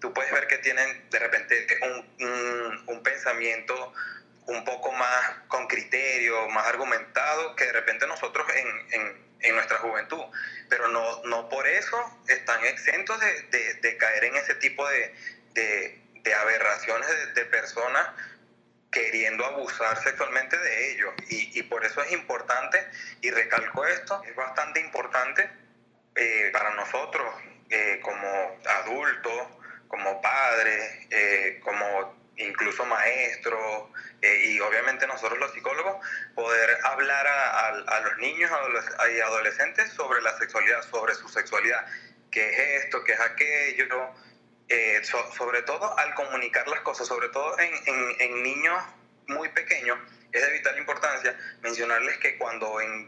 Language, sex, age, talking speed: Spanish, male, 30-49, 135 wpm